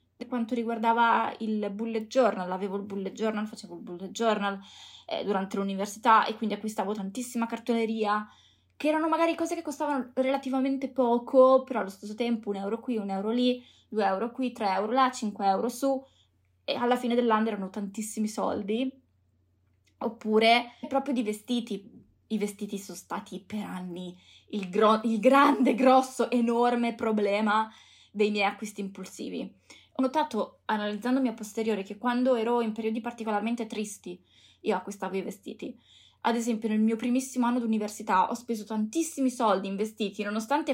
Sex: female